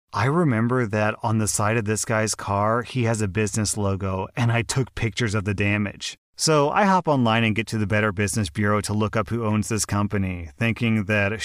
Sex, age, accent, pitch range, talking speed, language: male, 30-49, American, 110-145 Hz, 220 wpm, English